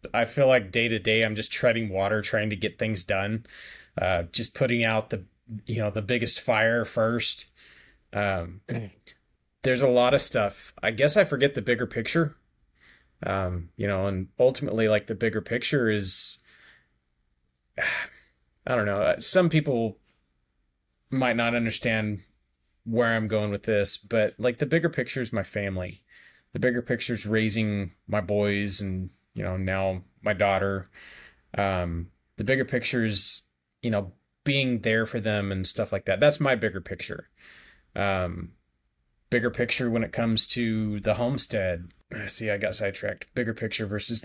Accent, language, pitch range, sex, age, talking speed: American, English, 95-120 Hz, male, 20-39, 160 wpm